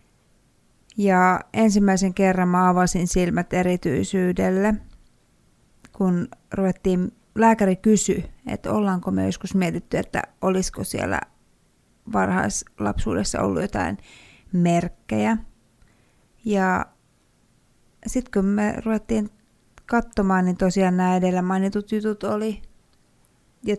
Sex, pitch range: female, 180-220 Hz